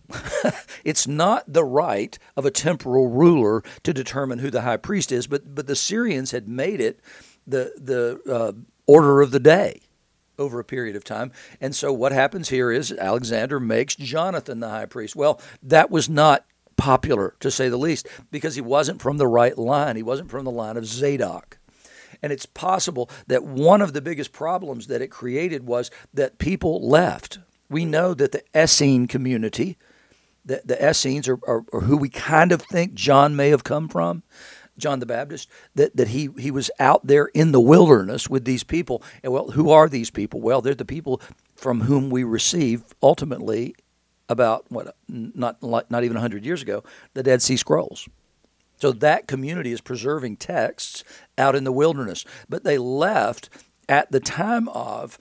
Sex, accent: male, American